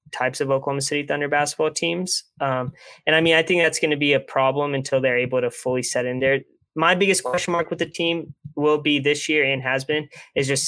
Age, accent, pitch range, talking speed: 20-39, American, 125-150 Hz, 240 wpm